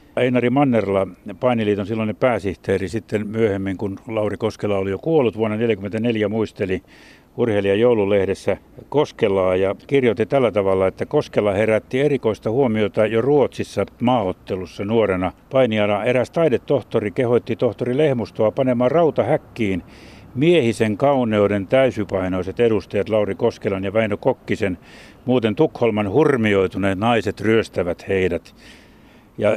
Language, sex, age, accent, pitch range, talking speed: Finnish, male, 60-79, native, 100-125 Hz, 110 wpm